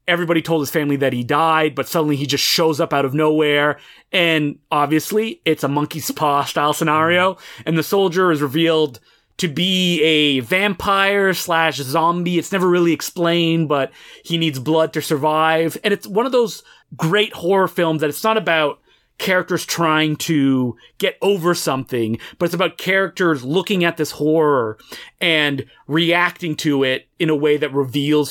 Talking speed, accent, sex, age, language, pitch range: 170 wpm, American, male, 30-49, English, 145-180 Hz